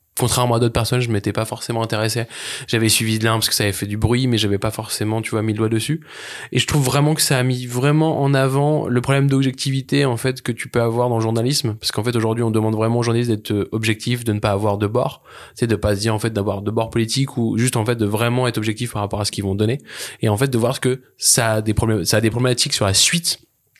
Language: French